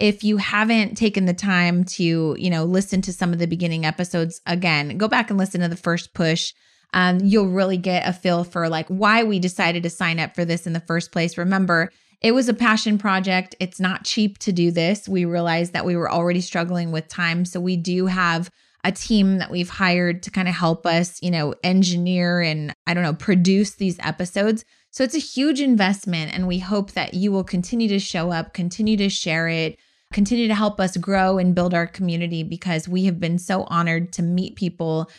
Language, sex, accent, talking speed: English, female, American, 215 wpm